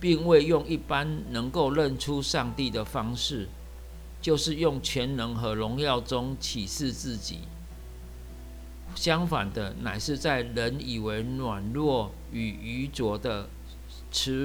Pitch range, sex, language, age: 85-130 Hz, male, Chinese, 50-69